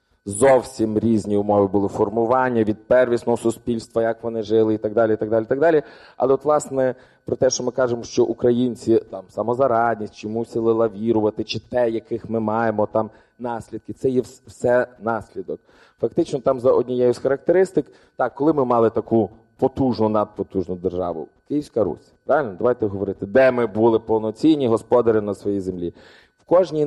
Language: Ukrainian